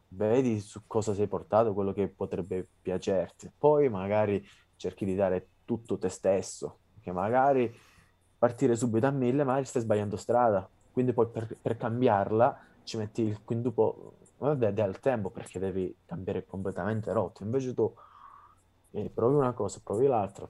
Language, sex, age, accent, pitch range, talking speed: Italian, male, 20-39, native, 95-125 Hz, 150 wpm